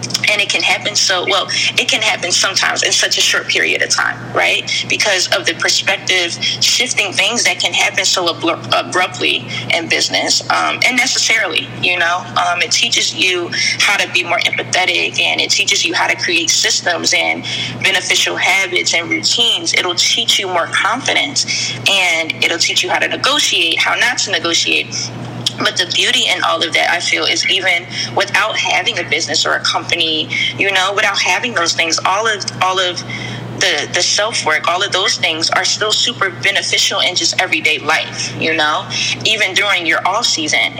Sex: female